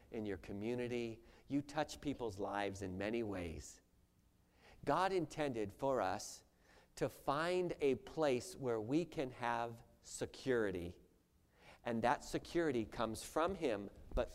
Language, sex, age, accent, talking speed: English, male, 50-69, American, 125 wpm